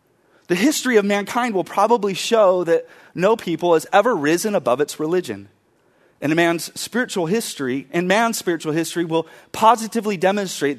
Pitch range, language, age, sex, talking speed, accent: 150-195 Hz, English, 30-49, male, 155 wpm, American